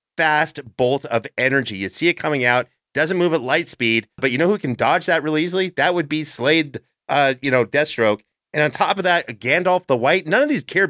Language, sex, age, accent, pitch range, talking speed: English, male, 30-49, American, 120-155 Hz, 235 wpm